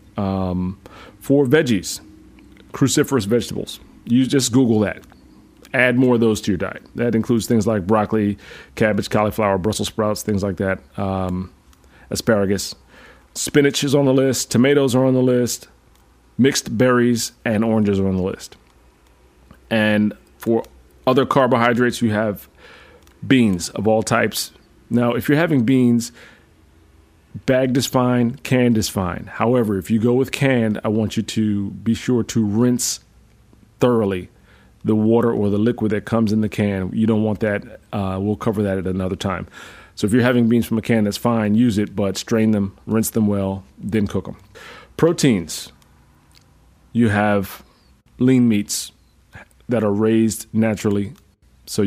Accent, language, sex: American, English, male